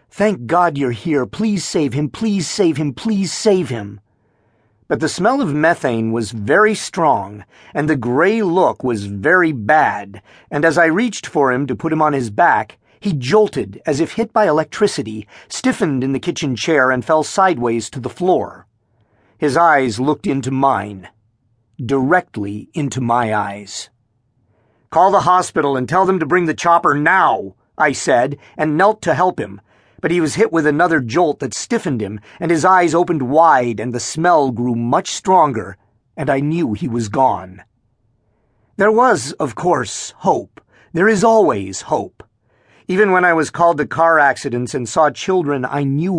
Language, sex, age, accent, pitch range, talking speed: English, male, 50-69, American, 115-170 Hz, 175 wpm